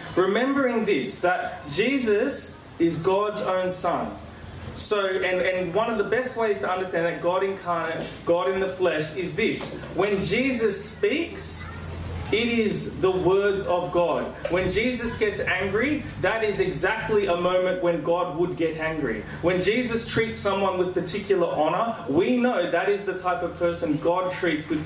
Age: 30-49